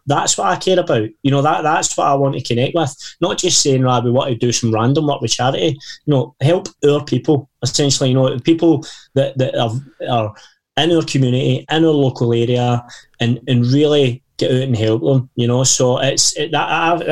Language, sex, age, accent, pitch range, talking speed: English, male, 20-39, British, 120-135 Hz, 215 wpm